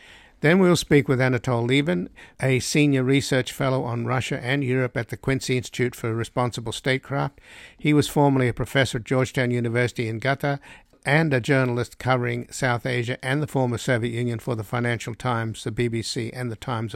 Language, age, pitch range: English, 60-79, 120-135 Hz